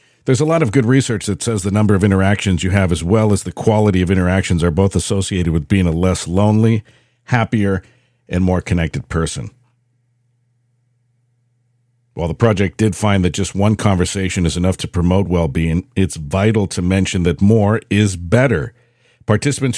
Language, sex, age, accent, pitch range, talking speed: English, male, 50-69, American, 95-120 Hz, 175 wpm